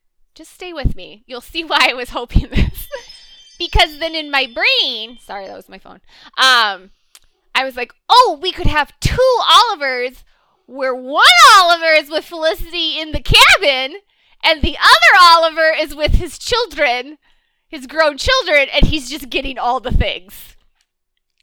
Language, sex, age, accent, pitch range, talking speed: English, female, 20-39, American, 245-350 Hz, 160 wpm